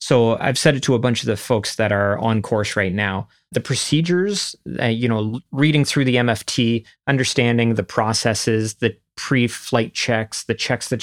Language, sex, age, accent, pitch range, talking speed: English, male, 30-49, American, 110-125 Hz, 185 wpm